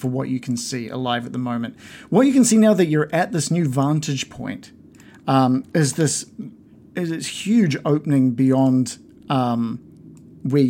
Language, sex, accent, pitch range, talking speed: English, male, Australian, 130-155 Hz, 175 wpm